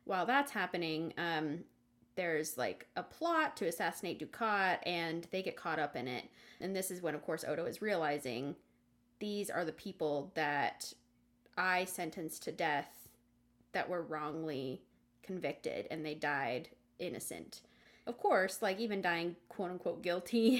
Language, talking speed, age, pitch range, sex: English, 150 wpm, 20-39, 165-205 Hz, female